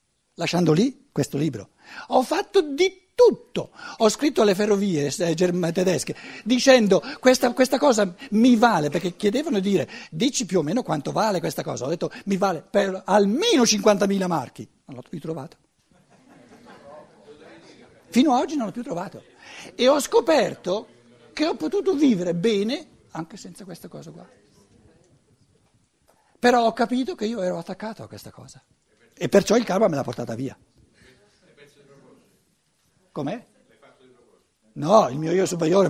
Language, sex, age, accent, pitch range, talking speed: Italian, male, 60-79, native, 175-245 Hz, 145 wpm